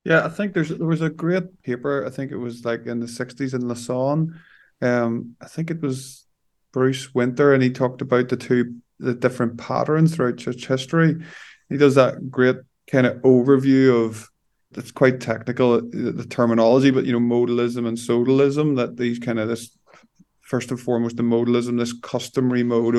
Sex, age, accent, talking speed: male, 20-39, Irish, 185 wpm